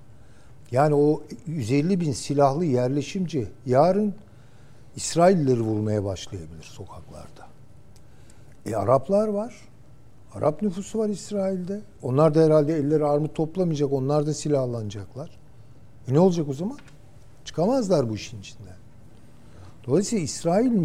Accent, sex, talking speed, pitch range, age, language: native, male, 110 wpm, 120-155 Hz, 60-79, Turkish